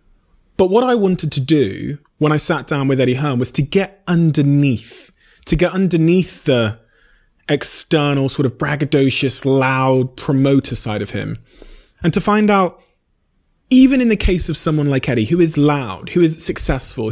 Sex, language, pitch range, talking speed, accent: male, English, 125-170 Hz, 170 wpm, British